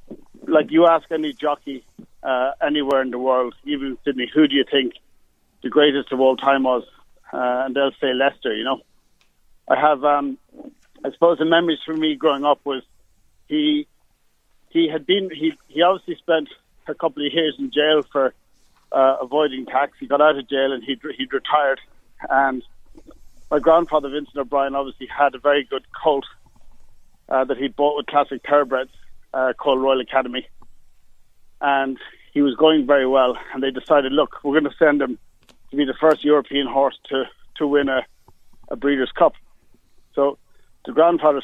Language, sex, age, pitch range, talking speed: English, male, 50-69, 135-155 Hz, 170 wpm